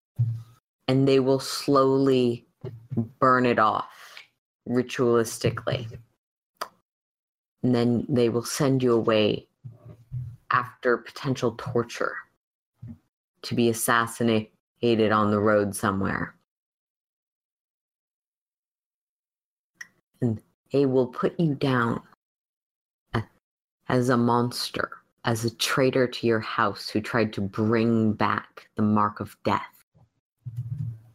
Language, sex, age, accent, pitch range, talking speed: English, female, 30-49, American, 115-130 Hz, 95 wpm